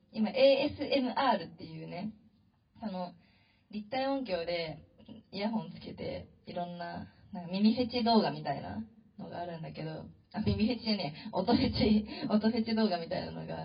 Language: Japanese